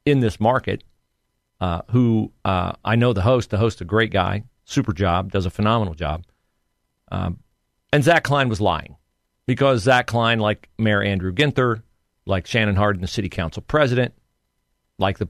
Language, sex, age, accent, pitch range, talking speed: English, male, 40-59, American, 100-140 Hz, 170 wpm